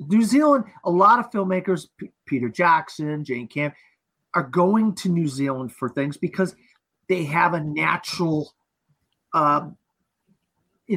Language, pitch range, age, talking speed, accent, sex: English, 135-175 Hz, 40-59, 135 wpm, American, male